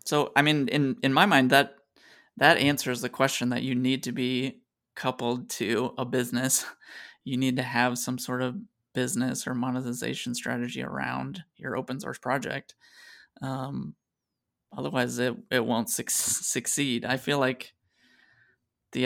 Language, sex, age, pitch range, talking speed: English, male, 20-39, 125-135 Hz, 150 wpm